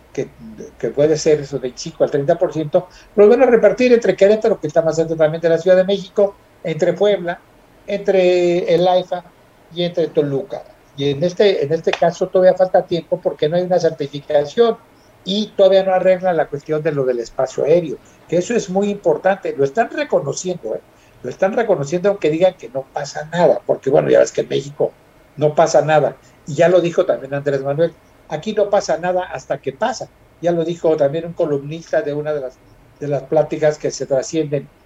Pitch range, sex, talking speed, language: 145-180 Hz, male, 200 wpm, Spanish